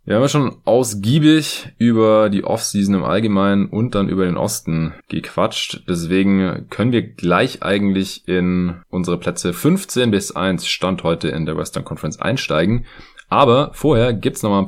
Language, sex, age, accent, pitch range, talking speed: German, male, 20-39, German, 90-115 Hz, 175 wpm